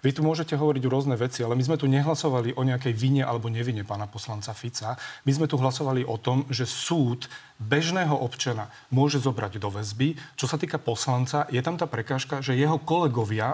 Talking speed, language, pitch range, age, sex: 200 wpm, Slovak, 120-140 Hz, 40-59, male